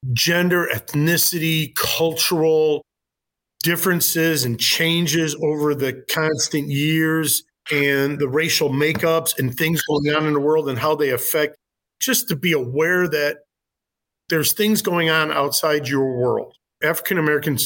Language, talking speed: English, 130 wpm